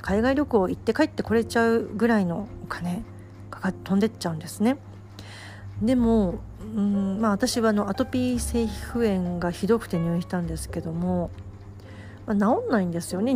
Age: 40-59